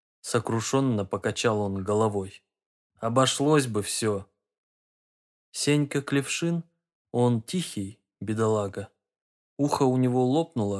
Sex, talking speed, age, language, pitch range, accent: male, 90 wpm, 20-39, Russian, 105-130 Hz, native